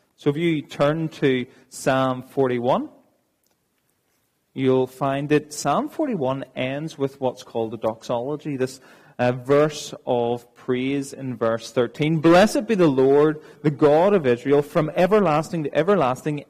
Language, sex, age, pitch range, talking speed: English, male, 30-49, 125-170 Hz, 140 wpm